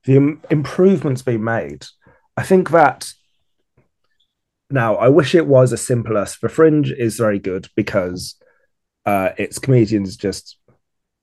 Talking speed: 135 wpm